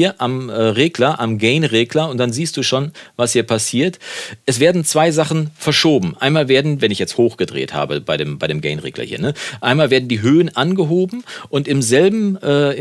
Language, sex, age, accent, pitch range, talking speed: German, male, 40-59, German, 105-145 Hz, 185 wpm